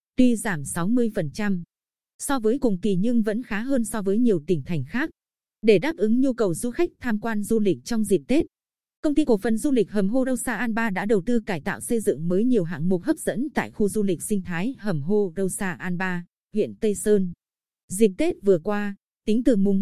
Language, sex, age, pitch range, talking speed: Vietnamese, female, 20-39, 190-235 Hz, 235 wpm